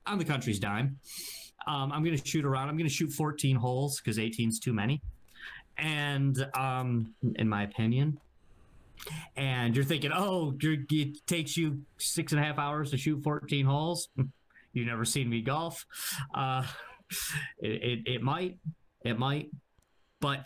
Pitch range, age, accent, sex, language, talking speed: 110-145 Hz, 30-49, American, male, English, 160 wpm